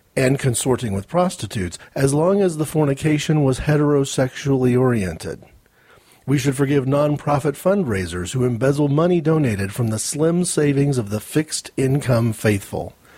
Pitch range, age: 120-155 Hz, 40-59